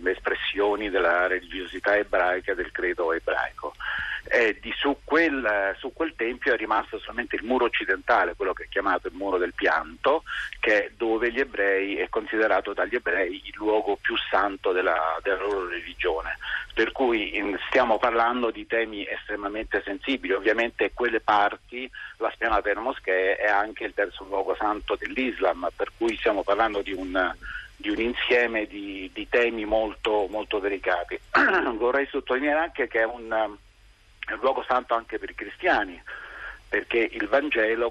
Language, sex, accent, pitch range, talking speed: Italian, male, native, 105-135 Hz, 155 wpm